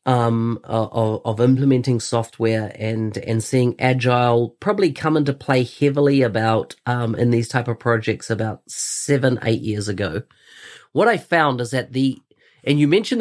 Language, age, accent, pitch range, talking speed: English, 40-59, Australian, 125-150 Hz, 160 wpm